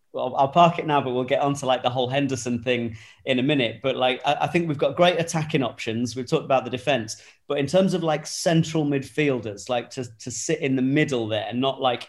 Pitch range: 120-145 Hz